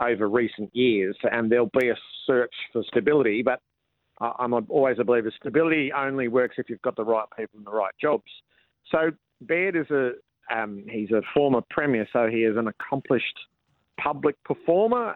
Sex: male